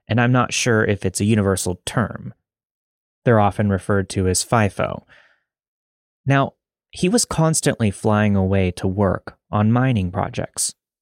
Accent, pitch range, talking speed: American, 95-125 Hz, 140 wpm